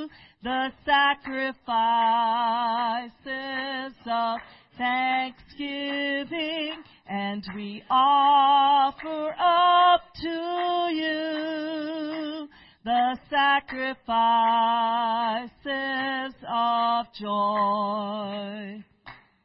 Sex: female